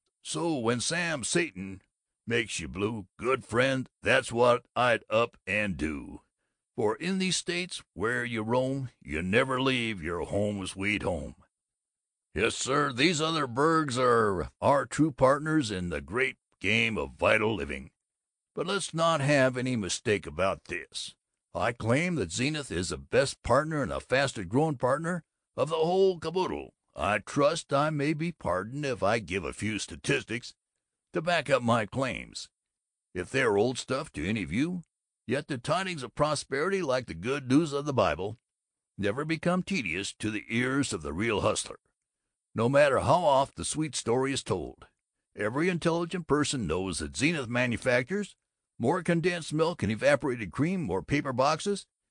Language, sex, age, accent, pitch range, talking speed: English, male, 60-79, American, 110-160 Hz, 165 wpm